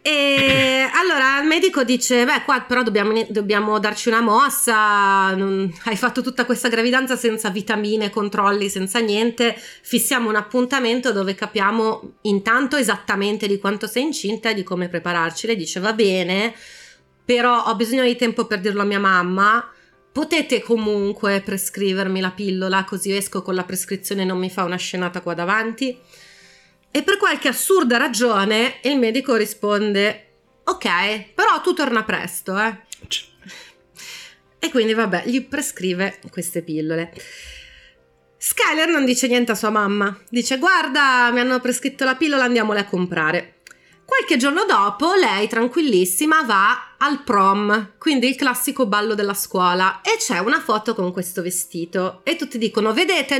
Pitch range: 195-260 Hz